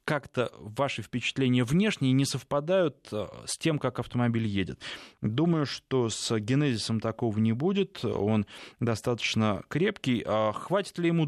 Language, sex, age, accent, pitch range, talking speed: Russian, male, 20-39, native, 110-140 Hz, 130 wpm